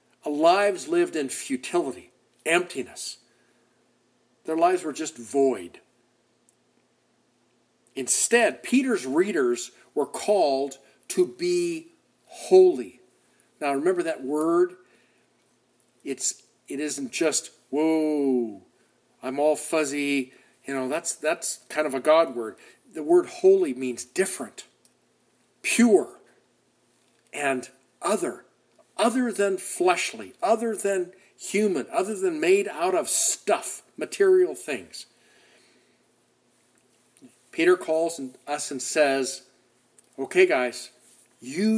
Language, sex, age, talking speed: English, male, 50-69, 100 wpm